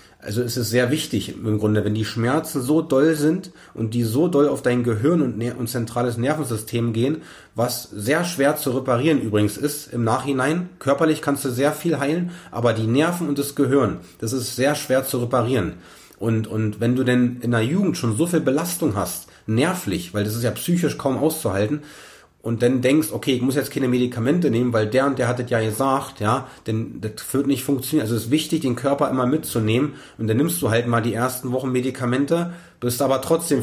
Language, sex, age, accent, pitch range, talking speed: German, male, 30-49, German, 115-145 Hz, 210 wpm